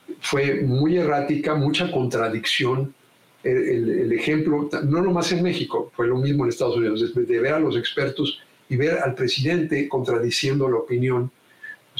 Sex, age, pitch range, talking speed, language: male, 50-69, 125-155 Hz, 165 wpm, Spanish